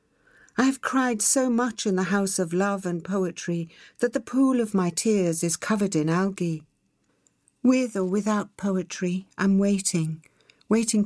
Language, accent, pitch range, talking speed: English, British, 165-210 Hz, 155 wpm